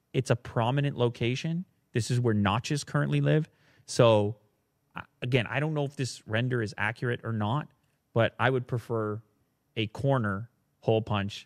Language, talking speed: English, 155 wpm